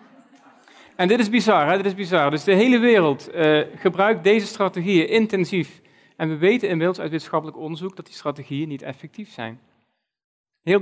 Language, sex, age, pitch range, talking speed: Dutch, male, 40-59, 145-185 Hz, 170 wpm